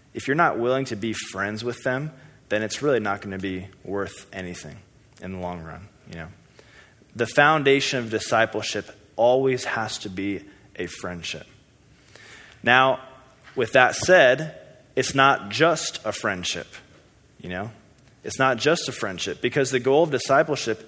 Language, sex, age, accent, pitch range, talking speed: English, male, 20-39, American, 105-135 Hz, 160 wpm